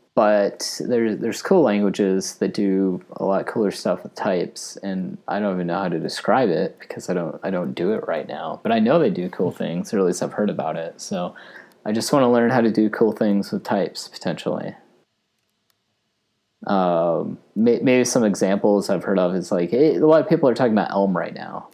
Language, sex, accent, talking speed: English, male, American, 210 wpm